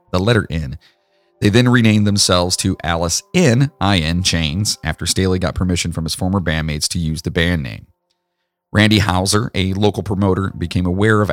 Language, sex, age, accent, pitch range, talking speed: English, male, 40-59, American, 85-105 Hz, 175 wpm